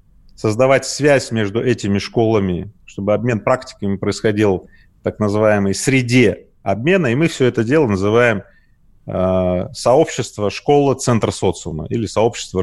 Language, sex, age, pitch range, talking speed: Russian, male, 30-49, 100-135 Hz, 130 wpm